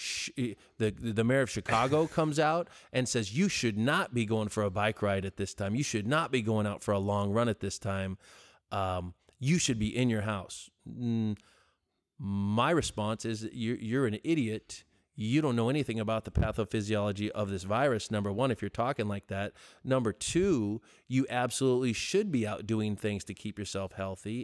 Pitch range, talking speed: 100-125 Hz, 195 wpm